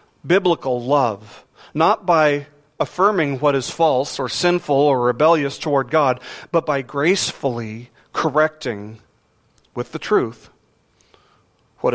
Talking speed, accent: 110 wpm, American